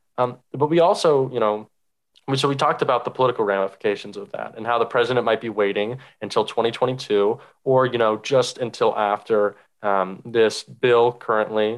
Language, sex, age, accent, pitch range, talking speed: English, male, 20-39, American, 105-135 Hz, 175 wpm